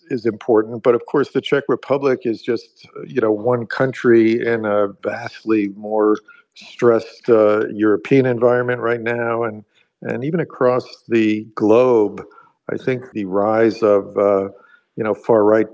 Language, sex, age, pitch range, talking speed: Czech, male, 50-69, 105-120 Hz, 150 wpm